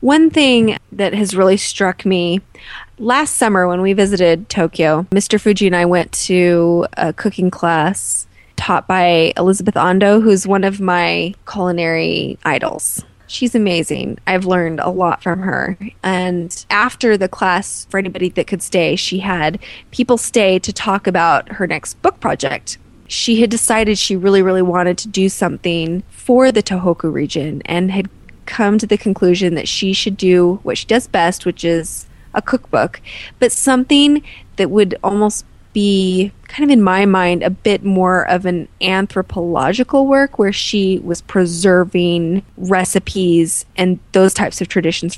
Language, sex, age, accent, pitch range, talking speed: English, female, 20-39, American, 175-210 Hz, 160 wpm